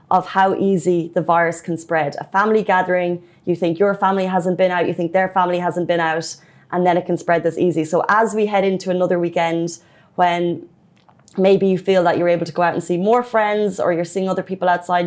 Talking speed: 230 wpm